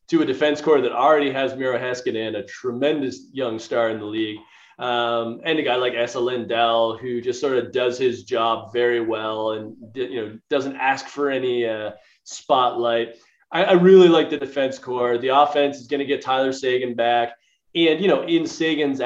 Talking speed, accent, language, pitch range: 200 wpm, American, English, 120-165 Hz